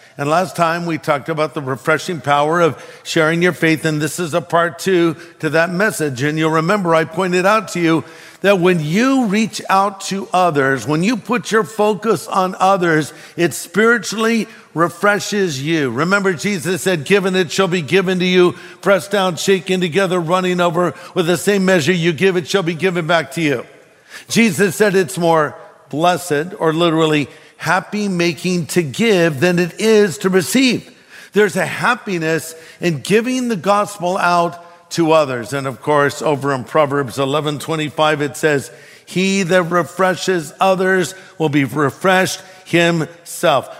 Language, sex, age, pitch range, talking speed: English, male, 50-69, 160-190 Hz, 165 wpm